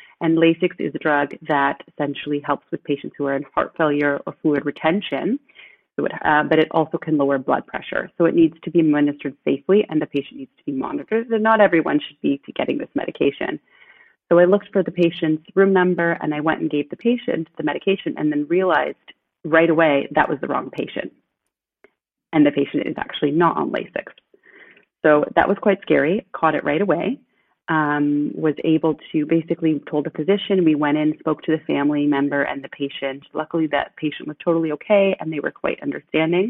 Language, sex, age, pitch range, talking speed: English, female, 30-49, 145-175 Hz, 200 wpm